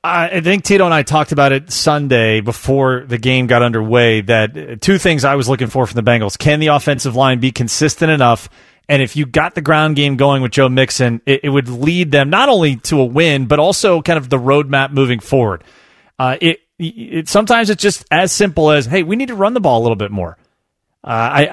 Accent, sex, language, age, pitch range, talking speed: American, male, English, 30-49, 130-165 Hz, 230 wpm